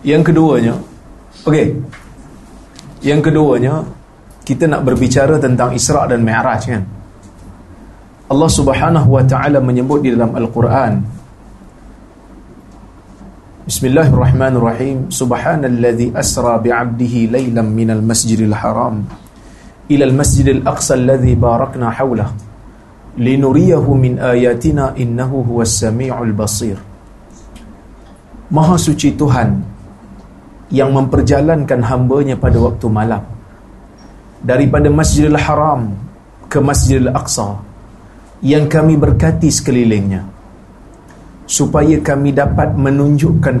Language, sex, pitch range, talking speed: Malay, male, 110-140 Hz, 90 wpm